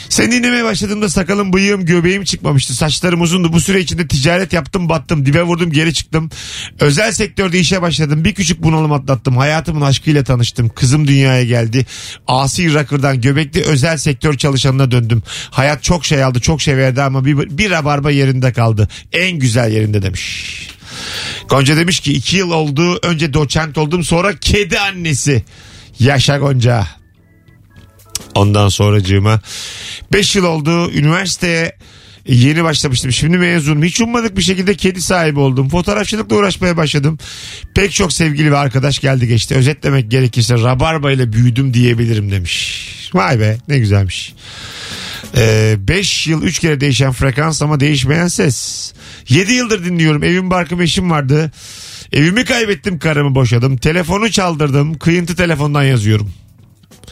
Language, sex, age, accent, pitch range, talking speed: Turkish, male, 40-59, native, 120-170 Hz, 140 wpm